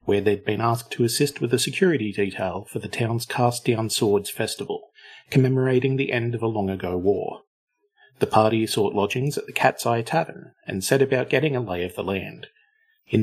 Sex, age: male, 40-59